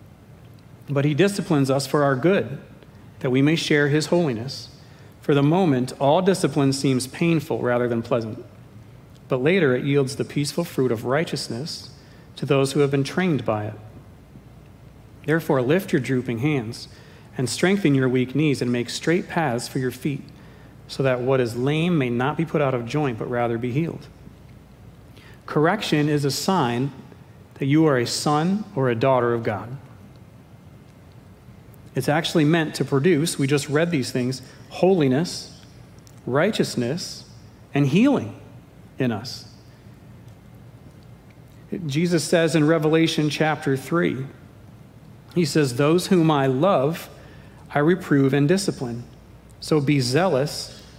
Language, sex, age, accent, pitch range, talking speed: English, male, 40-59, American, 125-155 Hz, 145 wpm